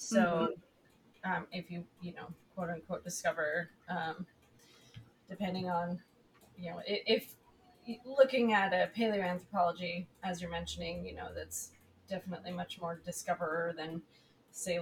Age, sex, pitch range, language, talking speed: 20-39, female, 180-210 Hz, English, 125 wpm